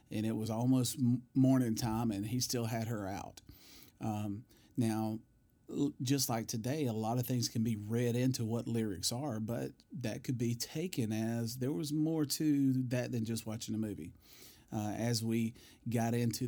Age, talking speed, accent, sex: 40-59, 180 wpm, American, male